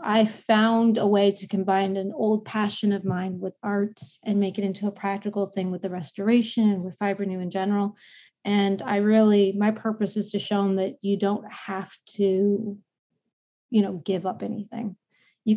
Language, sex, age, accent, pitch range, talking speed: English, female, 20-39, American, 190-220 Hz, 190 wpm